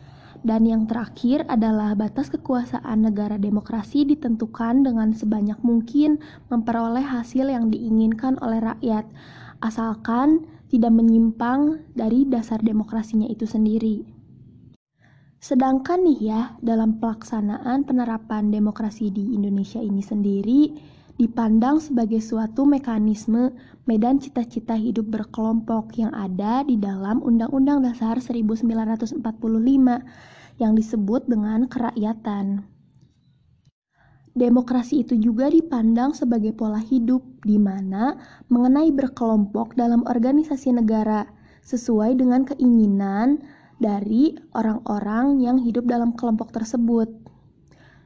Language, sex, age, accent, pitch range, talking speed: Indonesian, female, 20-39, native, 220-255 Hz, 100 wpm